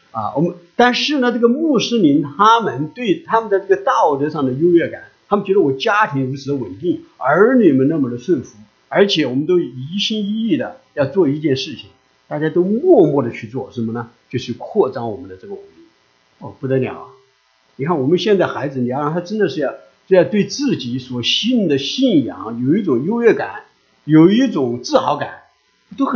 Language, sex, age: English, male, 50-69